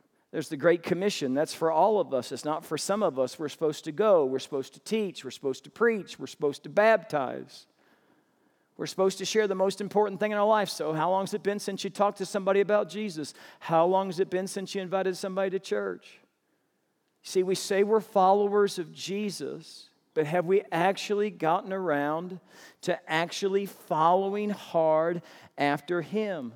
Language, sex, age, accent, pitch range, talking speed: English, male, 50-69, American, 160-205 Hz, 190 wpm